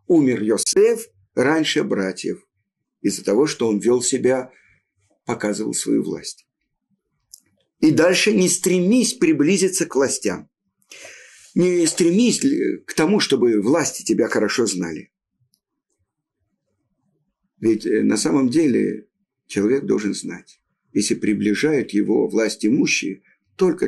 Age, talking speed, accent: 50-69, 105 wpm, native